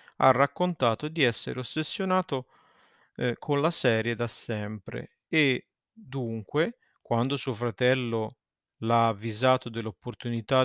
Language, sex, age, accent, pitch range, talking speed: Italian, male, 30-49, native, 115-140 Hz, 105 wpm